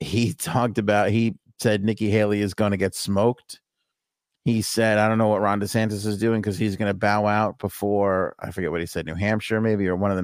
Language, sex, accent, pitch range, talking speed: English, male, American, 95-110 Hz, 240 wpm